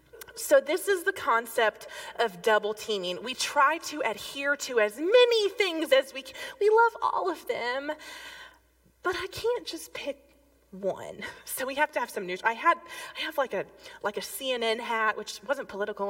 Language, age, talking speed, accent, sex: English, 20-39, 185 wpm, American, female